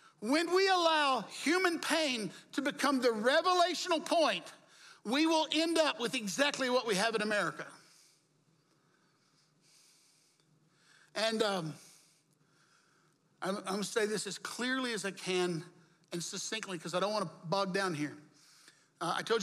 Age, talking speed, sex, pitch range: 60-79, 140 wpm, male, 185-260 Hz